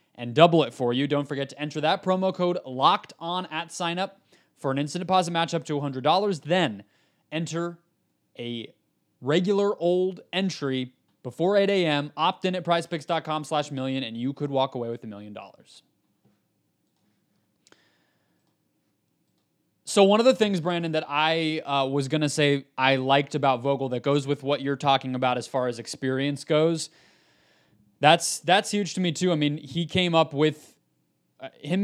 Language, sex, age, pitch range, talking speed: English, male, 20-39, 130-160 Hz, 170 wpm